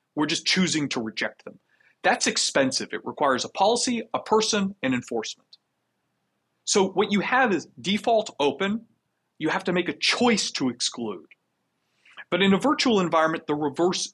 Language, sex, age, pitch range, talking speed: English, male, 30-49, 135-200 Hz, 160 wpm